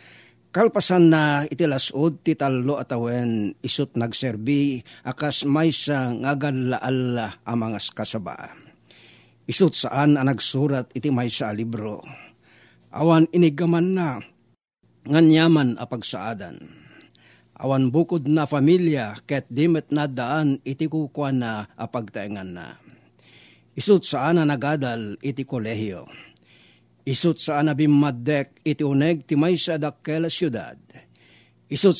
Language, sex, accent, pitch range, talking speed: Filipino, male, native, 120-155 Hz, 110 wpm